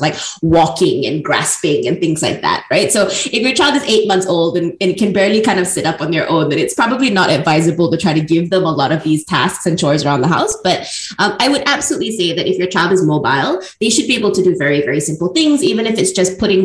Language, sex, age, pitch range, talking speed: English, female, 20-39, 160-190 Hz, 270 wpm